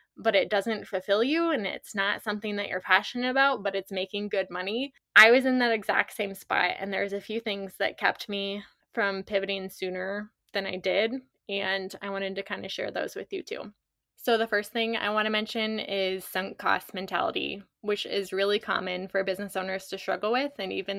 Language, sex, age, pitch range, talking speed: English, female, 20-39, 190-230 Hz, 210 wpm